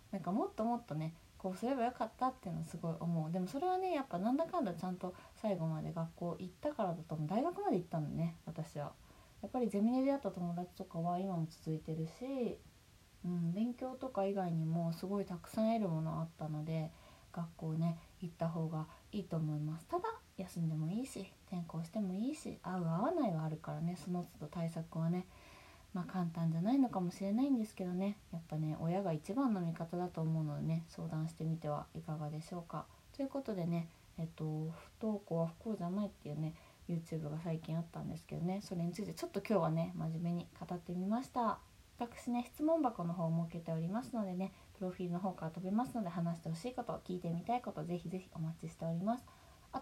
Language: Japanese